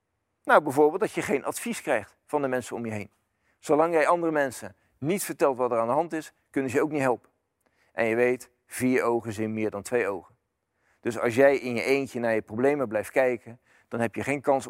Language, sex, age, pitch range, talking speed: Dutch, male, 40-59, 115-150 Hz, 235 wpm